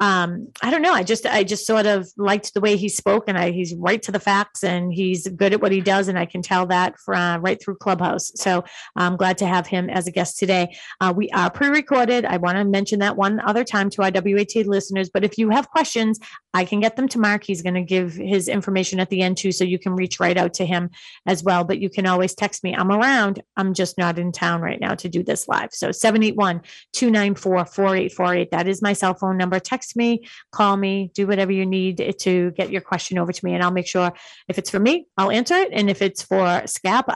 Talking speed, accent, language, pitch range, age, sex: 250 wpm, American, English, 180-205 Hz, 30-49, female